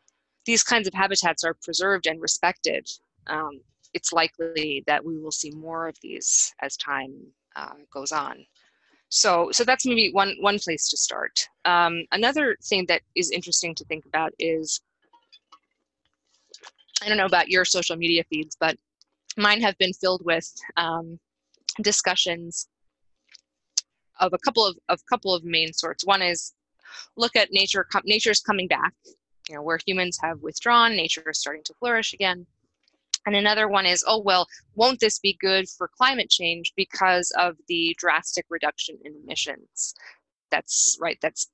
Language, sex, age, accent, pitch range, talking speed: English, female, 20-39, American, 160-205 Hz, 160 wpm